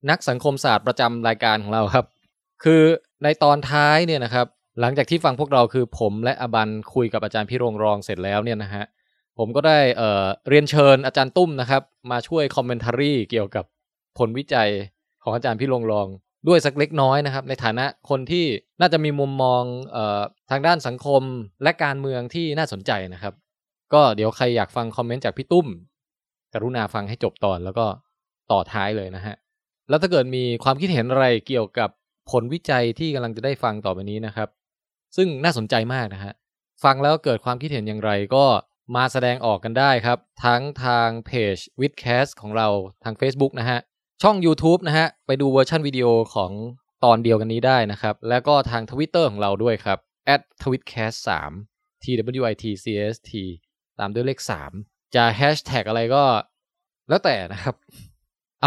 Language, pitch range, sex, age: Thai, 110-140 Hz, male, 20-39